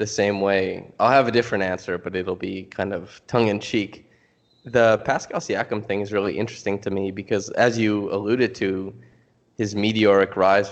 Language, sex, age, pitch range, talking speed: English, male, 20-39, 100-110 Hz, 175 wpm